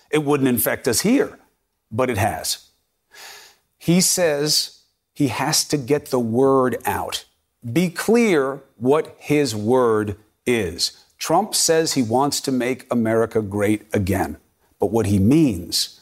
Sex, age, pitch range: male, 50-69, 110-155 Hz